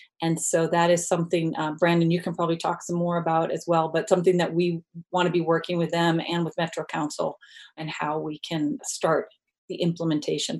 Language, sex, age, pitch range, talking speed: English, female, 40-59, 160-185 Hz, 210 wpm